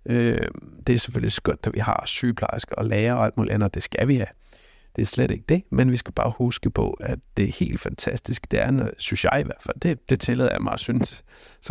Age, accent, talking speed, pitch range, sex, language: 60-79, native, 245 wpm, 105-125 Hz, male, Danish